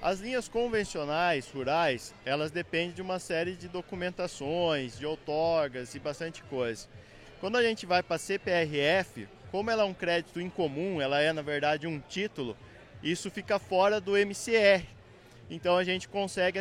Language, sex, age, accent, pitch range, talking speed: Portuguese, male, 20-39, Brazilian, 155-195 Hz, 160 wpm